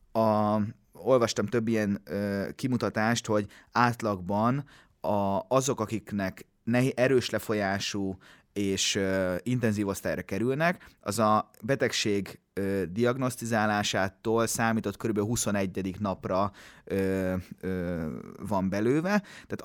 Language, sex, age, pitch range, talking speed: Hungarian, male, 30-49, 105-130 Hz, 75 wpm